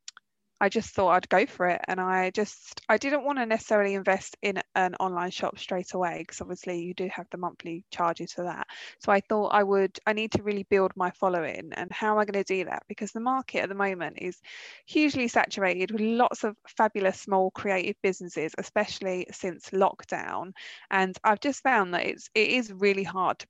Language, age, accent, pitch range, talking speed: English, 20-39, British, 185-215 Hz, 210 wpm